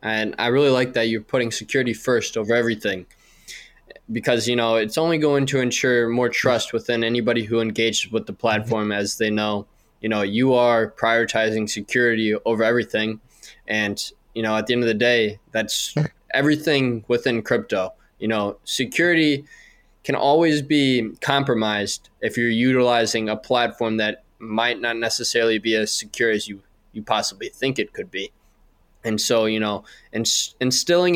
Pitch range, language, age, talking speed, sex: 110-130 Hz, English, 20-39, 160 wpm, male